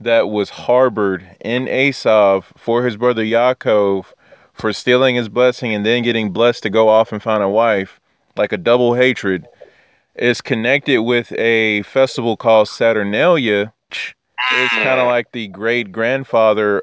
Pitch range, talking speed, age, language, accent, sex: 110-135 Hz, 150 wpm, 20-39, English, American, male